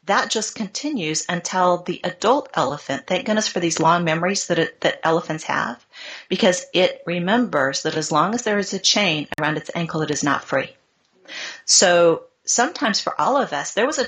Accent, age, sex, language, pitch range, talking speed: American, 40-59, female, English, 155-195 Hz, 190 wpm